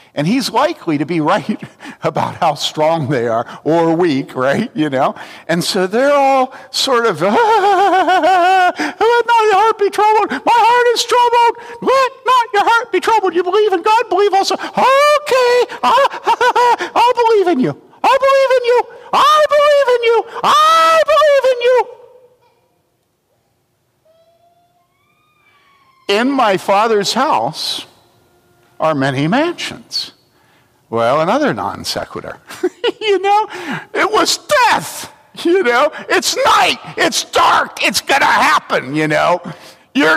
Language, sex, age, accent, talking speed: English, male, 50-69, American, 130 wpm